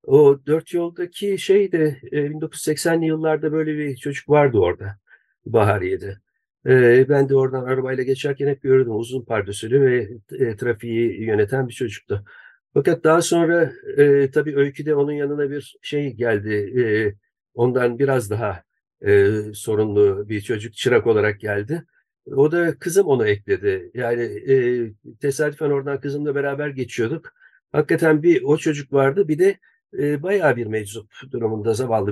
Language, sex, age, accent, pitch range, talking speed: Turkish, male, 50-69, native, 115-160 Hz, 130 wpm